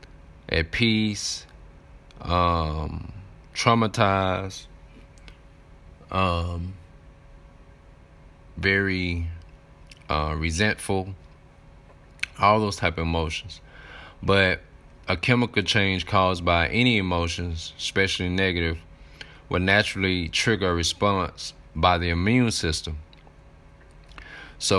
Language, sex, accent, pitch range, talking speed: English, male, American, 80-95 Hz, 80 wpm